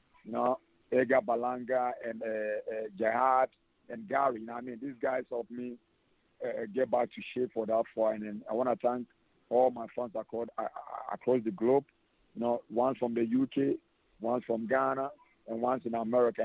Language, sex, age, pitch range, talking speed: English, male, 50-69, 115-135 Hz, 185 wpm